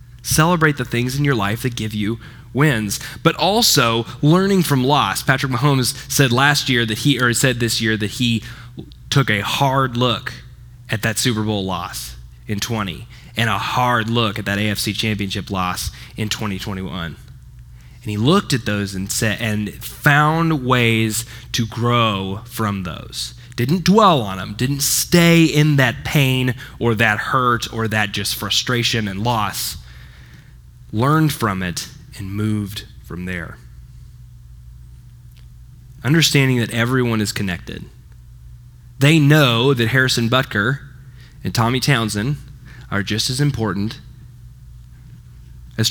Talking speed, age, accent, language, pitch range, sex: 140 wpm, 10-29, American, English, 105-130 Hz, male